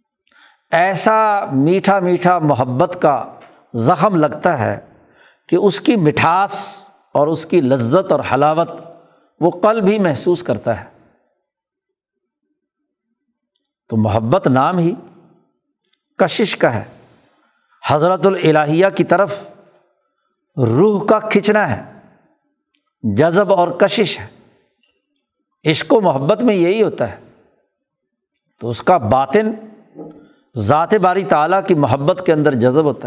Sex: male